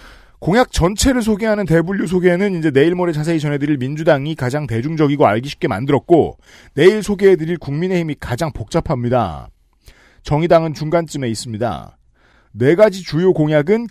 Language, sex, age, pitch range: Korean, male, 40-59, 140-185 Hz